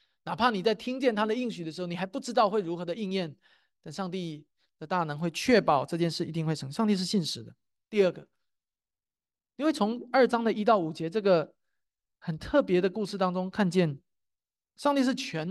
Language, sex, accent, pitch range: Chinese, male, native, 160-215 Hz